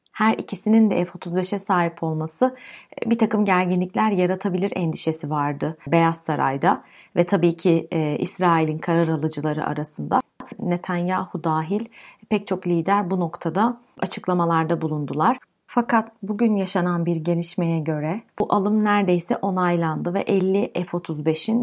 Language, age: Turkish, 30-49